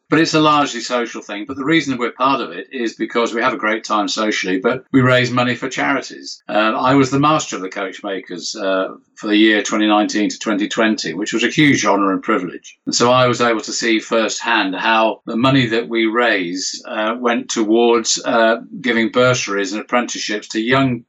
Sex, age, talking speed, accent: male, 50-69, 210 wpm, British